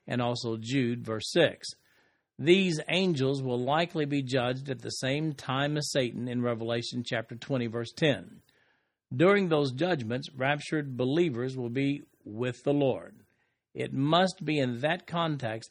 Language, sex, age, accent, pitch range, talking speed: English, male, 50-69, American, 120-155 Hz, 150 wpm